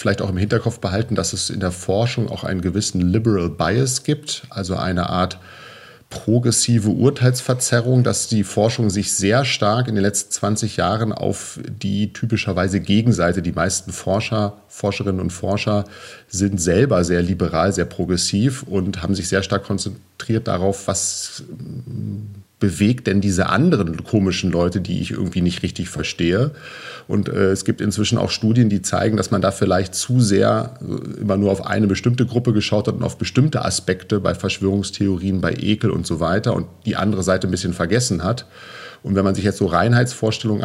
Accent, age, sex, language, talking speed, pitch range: German, 40-59, male, German, 175 wpm, 95-110 Hz